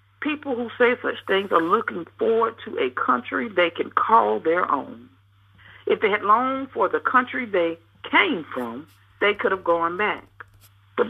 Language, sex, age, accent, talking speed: English, female, 60-79, American, 175 wpm